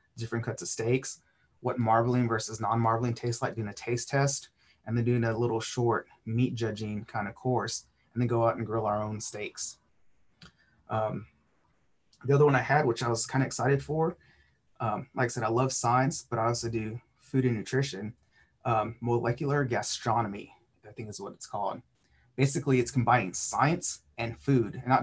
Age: 30-49